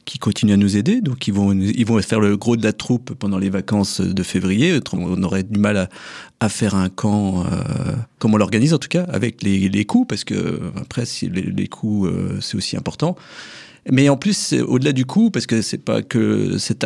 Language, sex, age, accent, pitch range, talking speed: French, male, 40-59, French, 100-125 Hz, 230 wpm